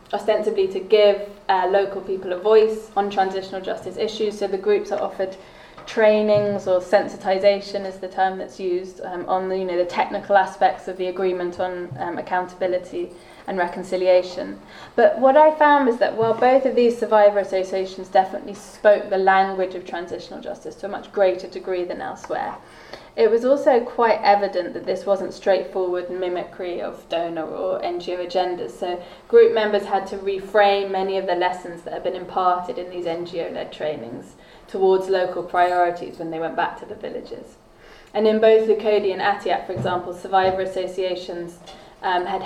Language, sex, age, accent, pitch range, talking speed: English, female, 20-39, British, 180-205 Hz, 170 wpm